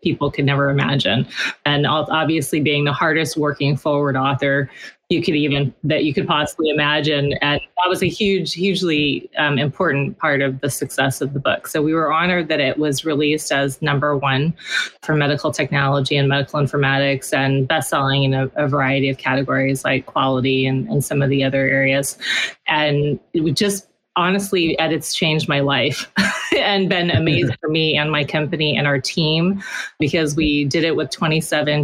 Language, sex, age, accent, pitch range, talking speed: English, female, 20-39, American, 140-160 Hz, 185 wpm